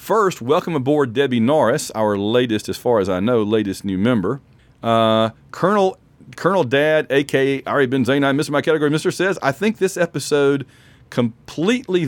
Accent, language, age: American, English, 40-59